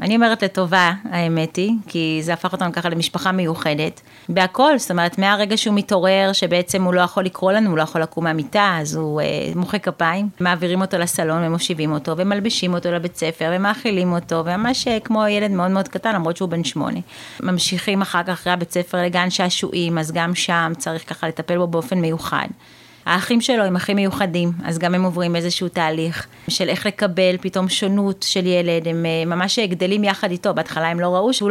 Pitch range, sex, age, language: 170-190 Hz, female, 30-49, Hebrew